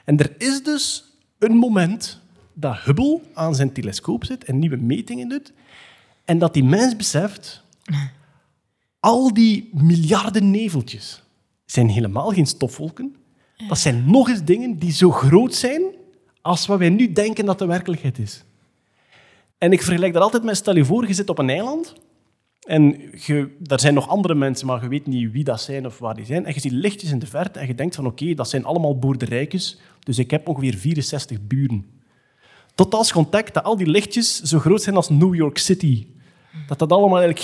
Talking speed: 190 wpm